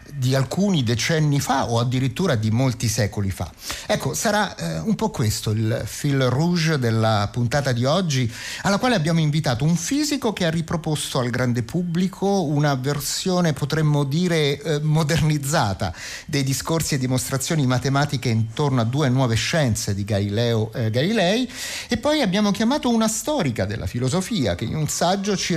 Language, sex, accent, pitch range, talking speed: Italian, male, native, 120-175 Hz, 160 wpm